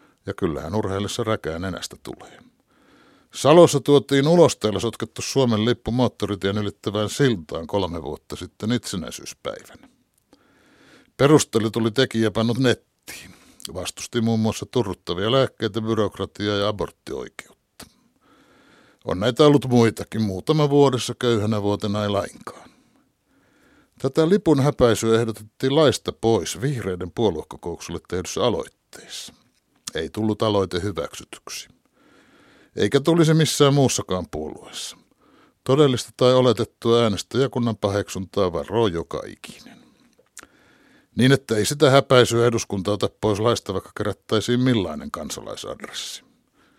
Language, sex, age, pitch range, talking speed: Finnish, male, 60-79, 105-140 Hz, 105 wpm